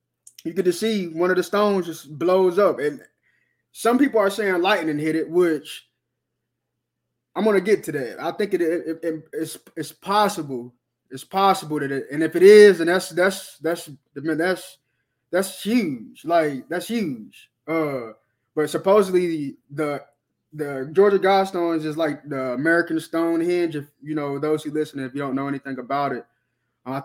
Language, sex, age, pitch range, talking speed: English, male, 20-39, 135-180 Hz, 175 wpm